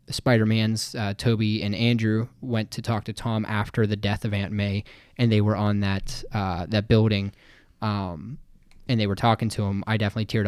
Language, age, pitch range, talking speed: English, 20-39, 100-115 Hz, 195 wpm